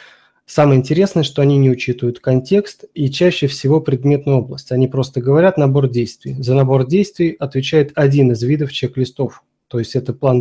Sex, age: male, 20-39